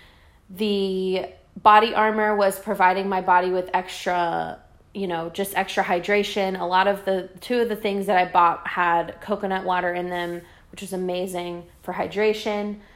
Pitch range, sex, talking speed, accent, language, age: 180-210 Hz, female, 160 wpm, American, English, 20-39